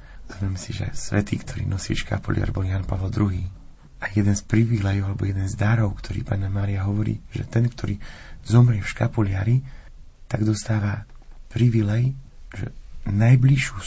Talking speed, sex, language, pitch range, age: 145 wpm, male, Slovak, 100-115 Hz, 40-59